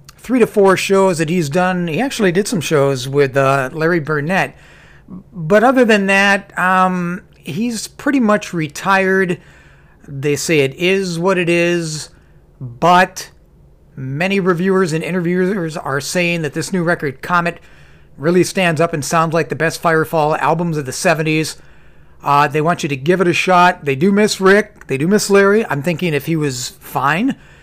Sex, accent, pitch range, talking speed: male, American, 155-190 Hz, 175 wpm